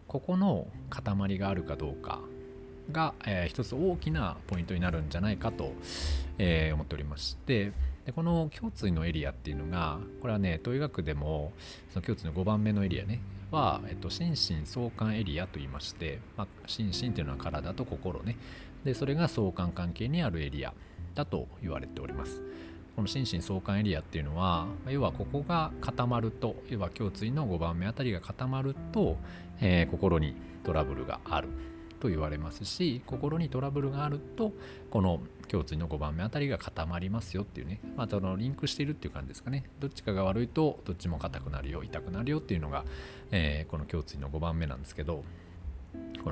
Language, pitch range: Japanese, 80-120 Hz